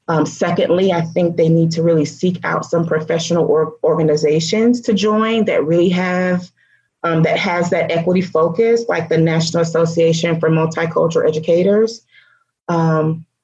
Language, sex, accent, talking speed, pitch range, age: English, female, American, 145 wpm, 160-185 Hz, 30-49